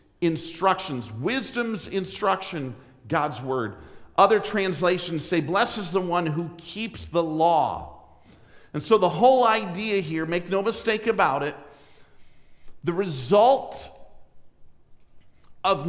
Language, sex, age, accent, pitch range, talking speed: English, male, 50-69, American, 150-210 Hz, 110 wpm